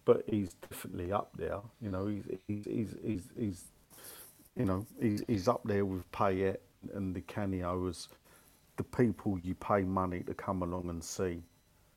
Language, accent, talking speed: English, British, 165 wpm